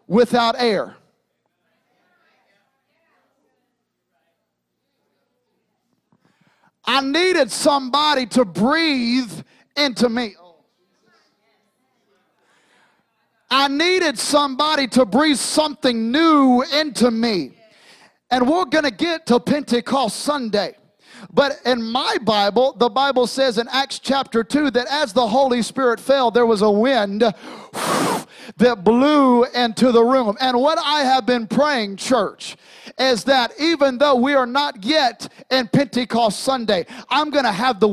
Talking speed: 115 wpm